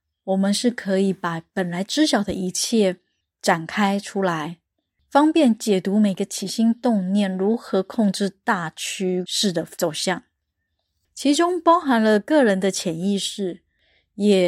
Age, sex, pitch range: 20-39, female, 180-235 Hz